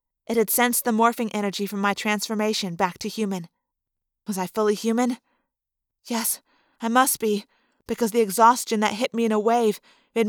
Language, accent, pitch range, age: English, American, 230-265 Hz, 30-49